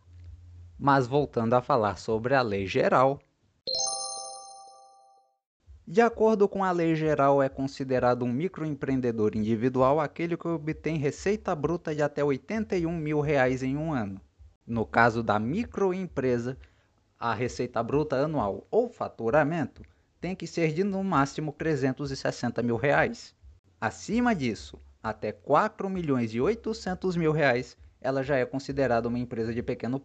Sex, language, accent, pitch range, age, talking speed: male, Portuguese, Brazilian, 110-155 Hz, 20-39, 135 wpm